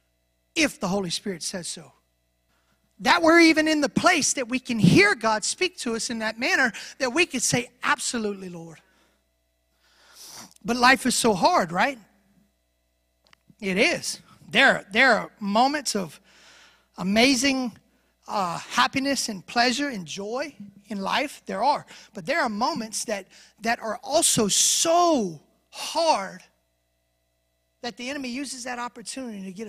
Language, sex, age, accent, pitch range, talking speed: English, male, 30-49, American, 185-260 Hz, 145 wpm